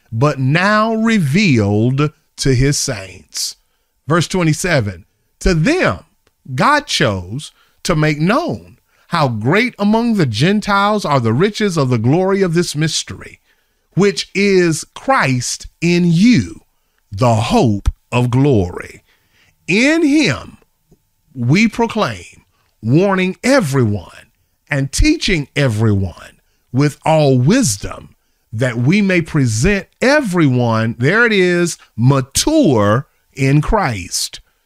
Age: 40-59